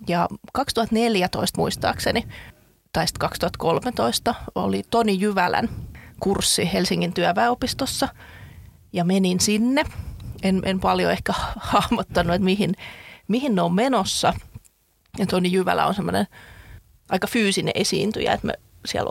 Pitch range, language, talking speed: 180-230 Hz, Finnish, 115 wpm